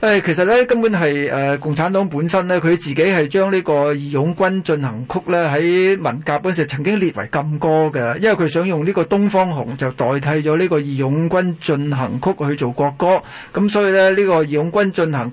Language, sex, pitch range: Chinese, male, 150-190 Hz